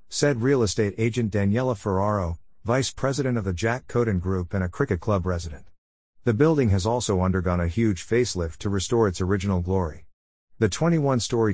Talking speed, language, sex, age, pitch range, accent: 170 wpm, English, male, 50-69, 90-115 Hz, American